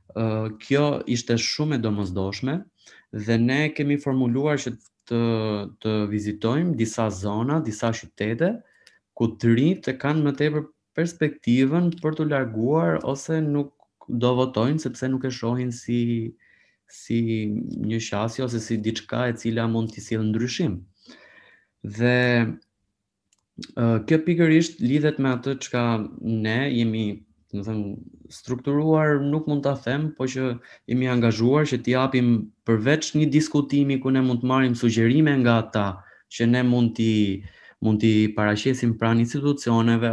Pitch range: 110-135 Hz